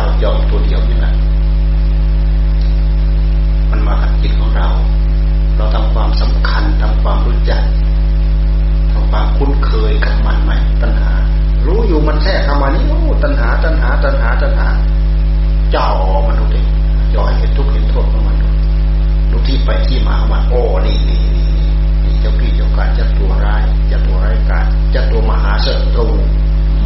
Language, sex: Thai, male